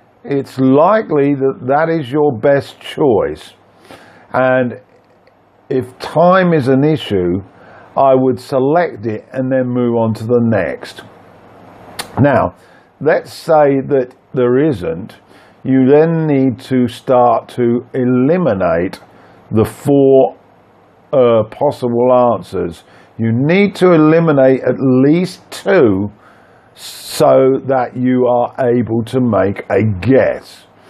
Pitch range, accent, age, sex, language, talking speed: 115-145 Hz, British, 50-69, male, English, 115 wpm